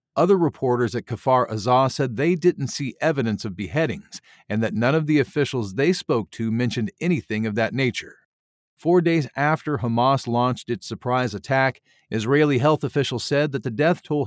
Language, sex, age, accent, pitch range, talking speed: English, male, 50-69, American, 120-150 Hz, 175 wpm